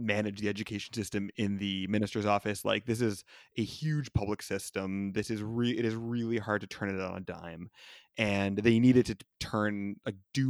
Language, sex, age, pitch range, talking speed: English, male, 20-39, 100-115 Hz, 200 wpm